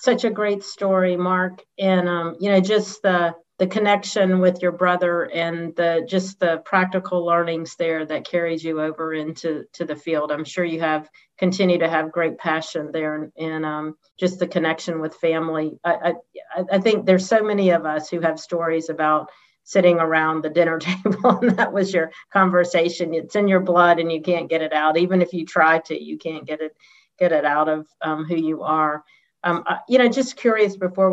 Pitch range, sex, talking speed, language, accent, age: 155-180 Hz, female, 200 wpm, English, American, 40-59